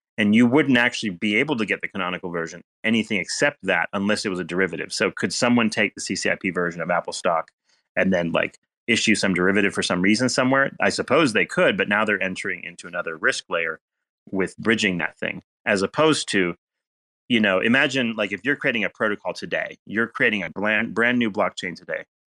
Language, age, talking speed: English, 30-49, 205 wpm